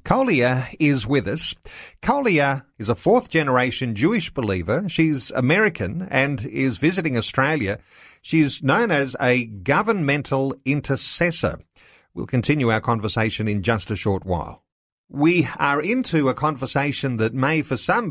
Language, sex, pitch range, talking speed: English, male, 110-150 Hz, 135 wpm